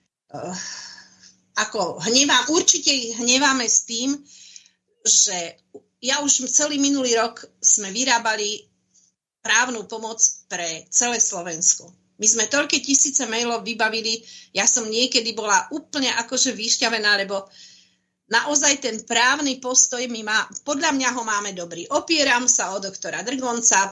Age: 40-59